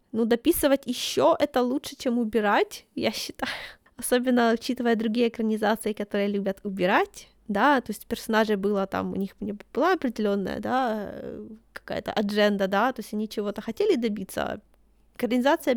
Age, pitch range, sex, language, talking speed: 20-39, 220-260 Hz, female, Ukrainian, 140 wpm